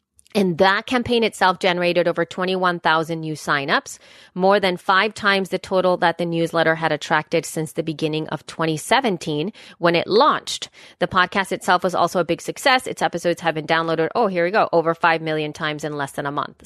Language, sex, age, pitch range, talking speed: English, female, 30-49, 170-235 Hz, 195 wpm